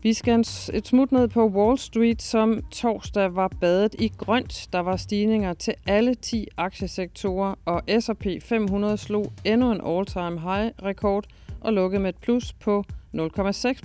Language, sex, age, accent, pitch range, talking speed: Danish, female, 40-59, native, 170-215 Hz, 145 wpm